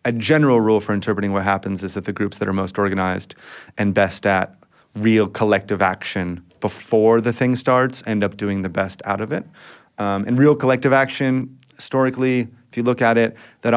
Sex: male